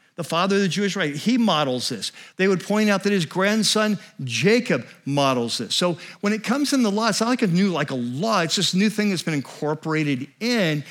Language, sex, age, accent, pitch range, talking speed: English, male, 50-69, American, 155-220 Hz, 230 wpm